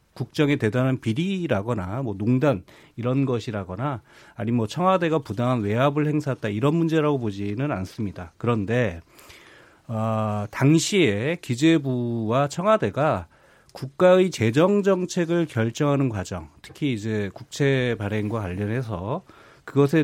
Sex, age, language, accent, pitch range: male, 40-59, Korean, native, 110-160 Hz